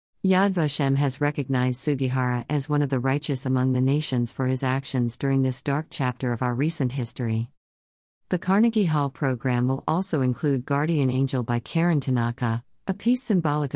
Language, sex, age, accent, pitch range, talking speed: English, female, 50-69, American, 130-155 Hz, 170 wpm